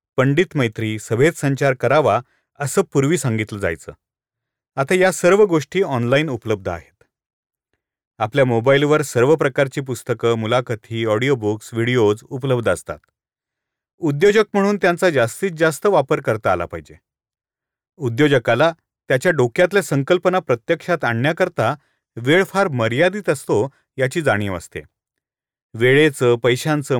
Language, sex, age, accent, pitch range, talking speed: Marathi, male, 40-59, native, 120-170 Hz, 110 wpm